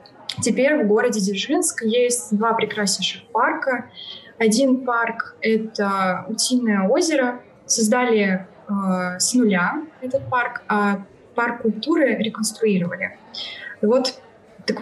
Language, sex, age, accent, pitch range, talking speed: Russian, female, 20-39, native, 190-250 Hz, 95 wpm